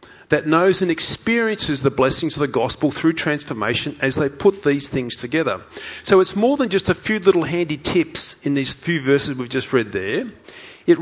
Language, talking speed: English, 195 wpm